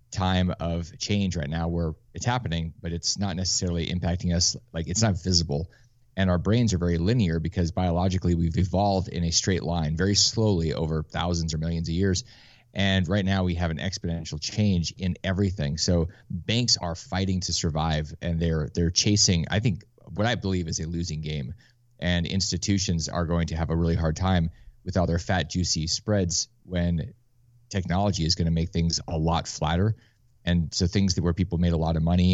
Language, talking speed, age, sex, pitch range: English, 195 wpm, 30-49, male, 85-100 Hz